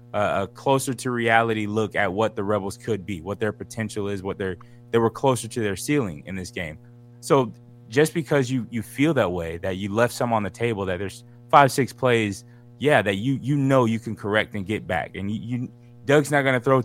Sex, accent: male, American